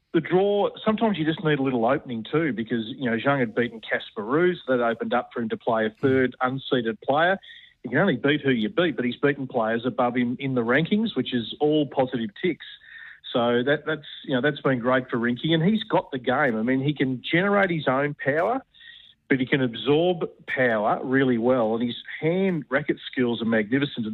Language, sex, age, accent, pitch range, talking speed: English, male, 40-59, Australian, 120-150 Hz, 220 wpm